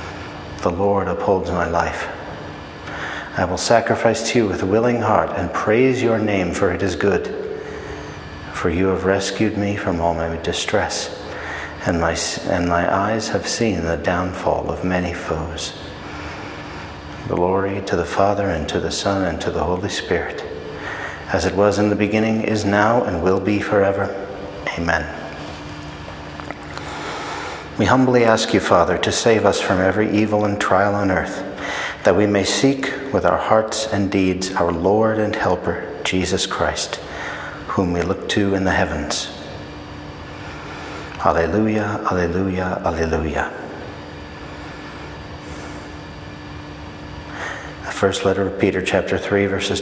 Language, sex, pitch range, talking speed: English, male, 85-100 Hz, 140 wpm